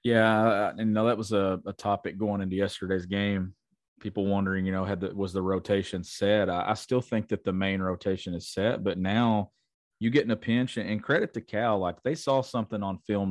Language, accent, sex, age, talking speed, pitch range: English, American, male, 30-49, 230 wpm, 95-110 Hz